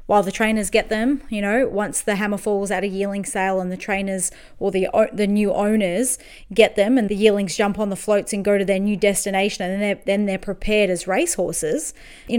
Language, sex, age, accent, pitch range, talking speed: English, female, 20-39, Australian, 195-225 Hz, 230 wpm